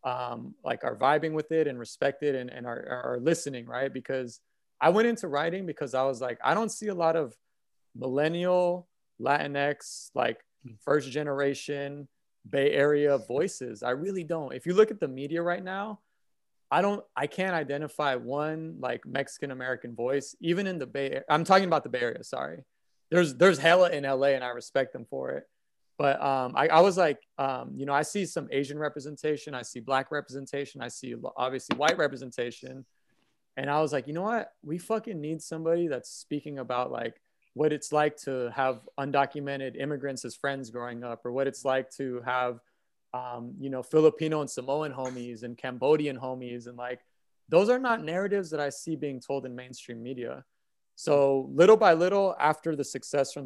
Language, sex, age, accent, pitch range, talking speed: English, male, 20-39, American, 130-160 Hz, 185 wpm